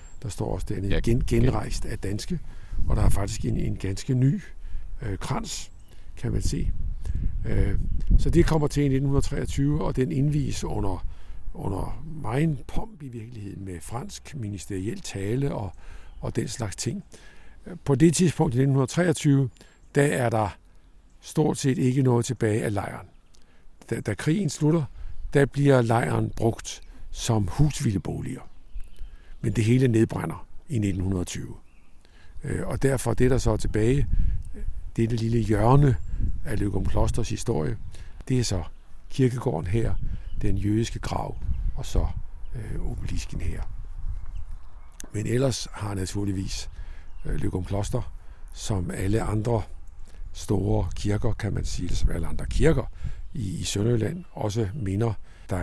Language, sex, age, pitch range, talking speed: Danish, male, 60-79, 90-125 Hz, 135 wpm